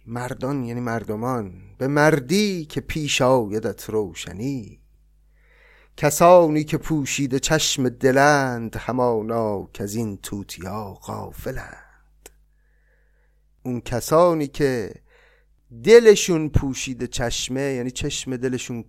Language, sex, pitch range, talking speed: Persian, male, 100-130 Hz, 90 wpm